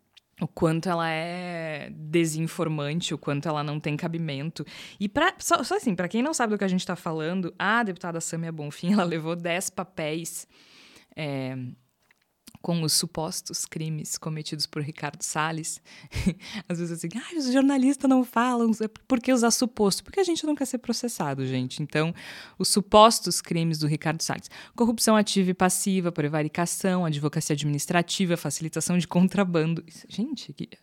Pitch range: 155-190 Hz